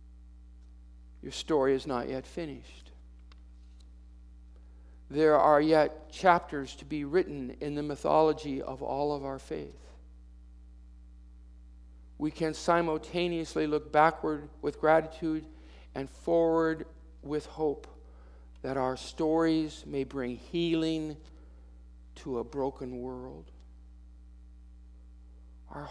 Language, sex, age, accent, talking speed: English, male, 50-69, American, 100 wpm